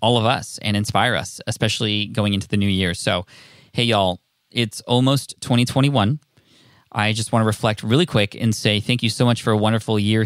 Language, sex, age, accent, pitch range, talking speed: English, male, 20-39, American, 105-125 Hz, 200 wpm